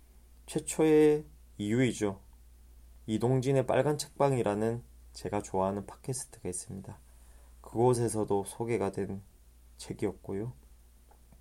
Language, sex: Korean, male